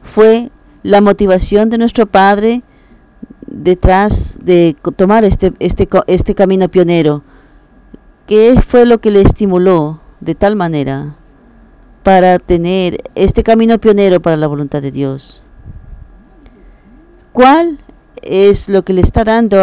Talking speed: 120 wpm